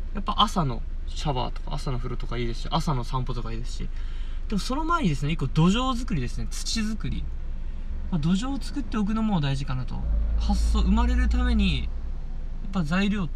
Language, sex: Japanese, male